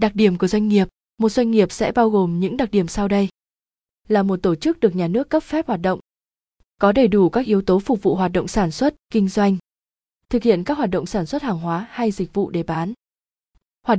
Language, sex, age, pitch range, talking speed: Vietnamese, female, 20-39, 185-225 Hz, 240 wpm